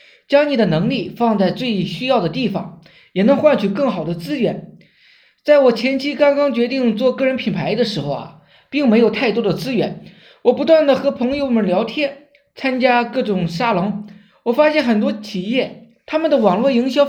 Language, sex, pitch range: Chinese, male, 205-275 Hz